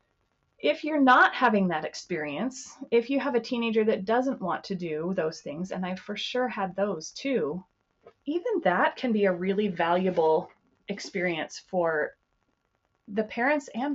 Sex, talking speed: female, 160 wpm